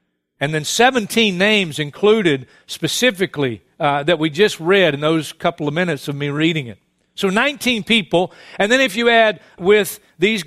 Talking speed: 170 wpm